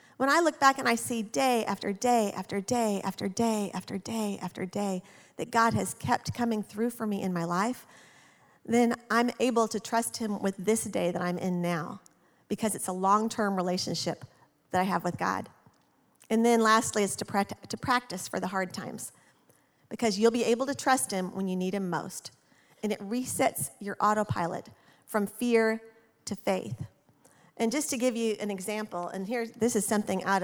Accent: American